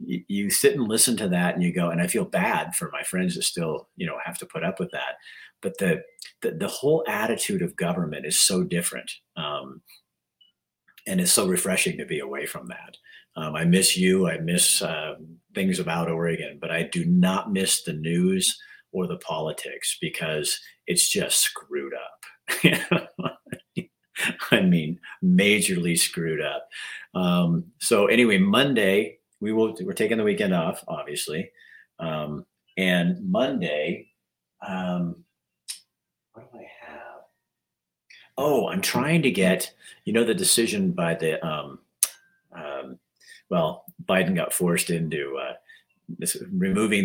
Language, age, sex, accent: English, 50-69, male, American